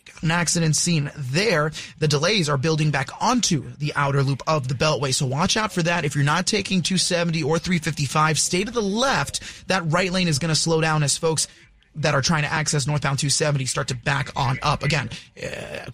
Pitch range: 145-170 Hz